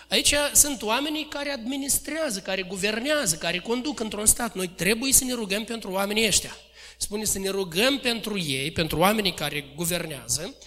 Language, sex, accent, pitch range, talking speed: Romanian, male, native, 195-260 Hz, 165 wpm